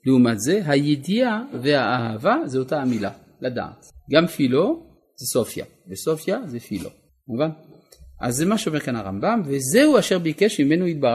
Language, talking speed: Hebrew, 145 wpm